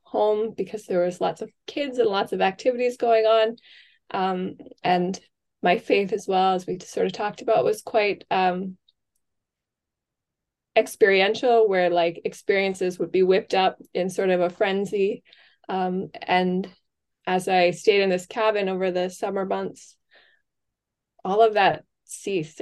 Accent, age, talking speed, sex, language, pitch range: American, 20-39, 150 wpm, female, English, 175-220 Hz